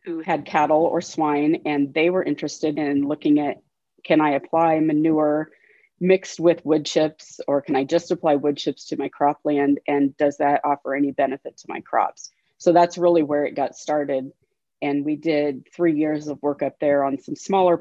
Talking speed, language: 195 wpm, English